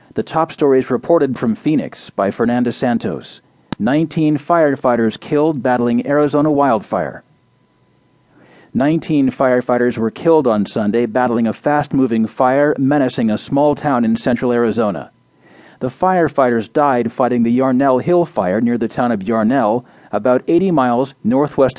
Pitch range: 120-160 Hz